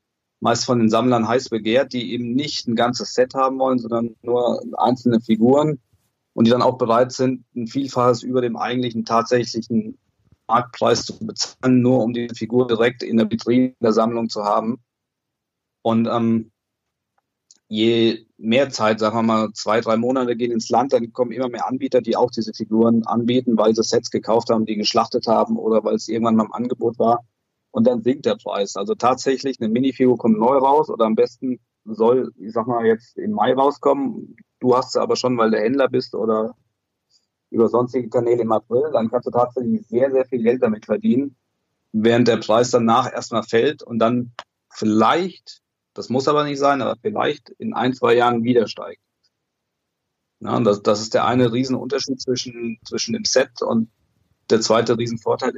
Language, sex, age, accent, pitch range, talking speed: German, male, 40-59, German, 115-125 Hz, 180 wpm